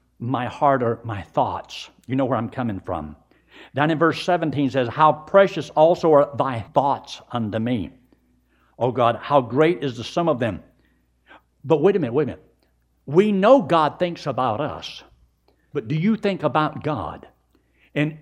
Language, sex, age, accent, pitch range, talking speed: English, male, 60-79, American, 110-165 Hz, 180 wpm